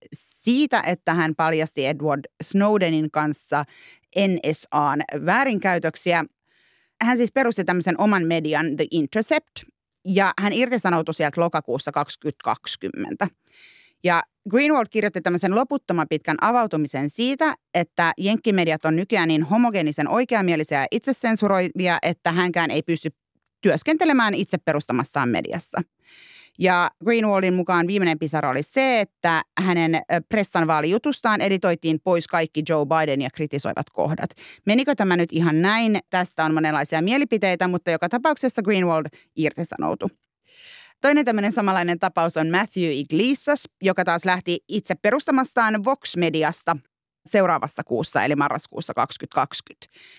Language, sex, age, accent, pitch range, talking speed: Finnish, female, 30-49, native, 160-220 Hz, 120 wpm